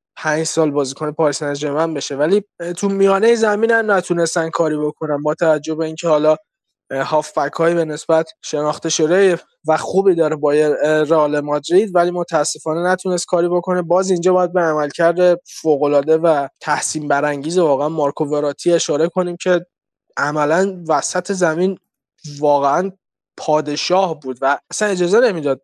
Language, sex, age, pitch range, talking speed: Persian, male, 20-39, 155-175 Hz, 150 wpm